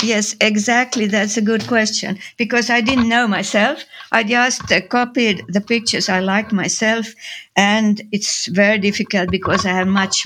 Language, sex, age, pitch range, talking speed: English, female, 60-79, 190-225 Hz, 165 wpm